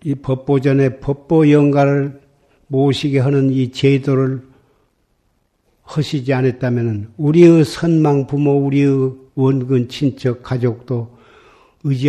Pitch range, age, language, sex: 125-140 Hz, 50-69, Korean, male